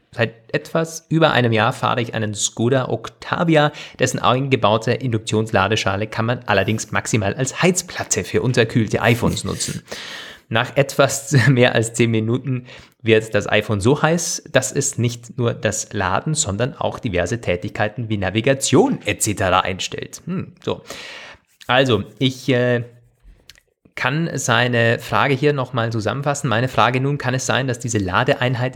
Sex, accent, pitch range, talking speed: male, German, 110-135 Hz, 140 wpm